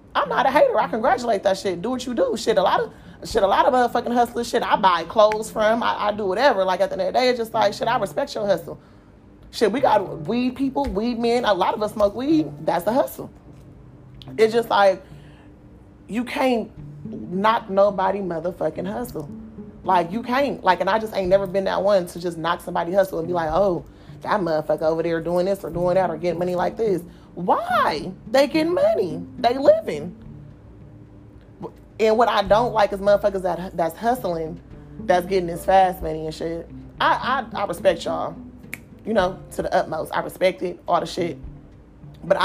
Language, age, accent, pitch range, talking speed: English, 30-49, American, 175-230 Hz, 205 wpm